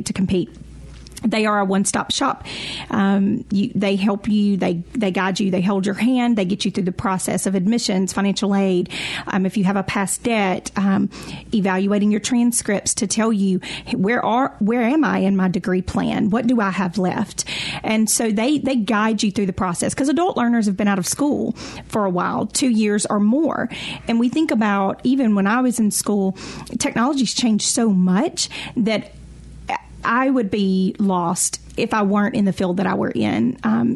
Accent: American